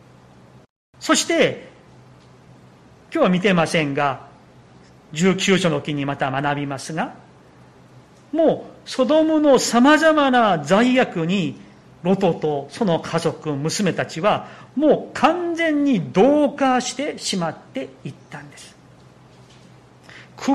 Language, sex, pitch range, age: Japanese, male, 155-245 Hz, 40-59